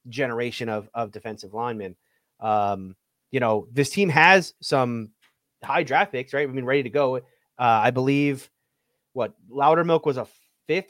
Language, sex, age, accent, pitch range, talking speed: English, male, 30-49, American, 115-155 Hz, 160 wpm